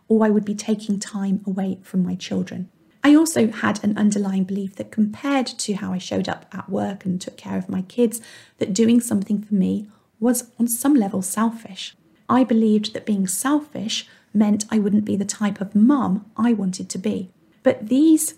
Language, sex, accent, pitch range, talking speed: English, female, British, 205-250 Hz, 195 wpm